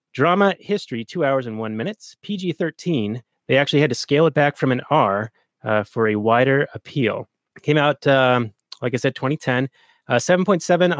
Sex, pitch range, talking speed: male, 130-160 Hz, 170 wpm